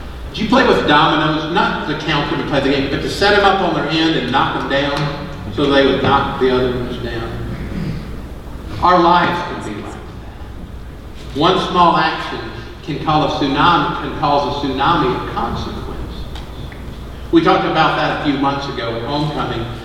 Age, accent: 50-69, American